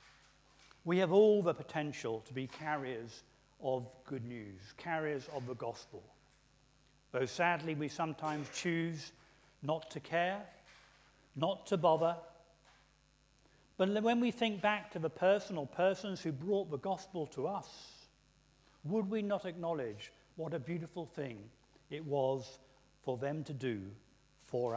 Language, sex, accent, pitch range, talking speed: English, male, British, 140-185 Hz, 140 wpm